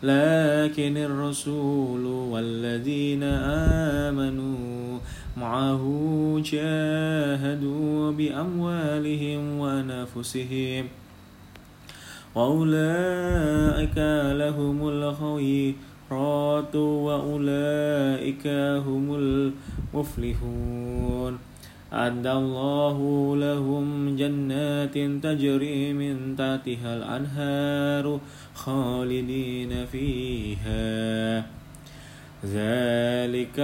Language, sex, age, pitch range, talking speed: Indonesian, male, 20-39, 130-145 Hz, 30 wpm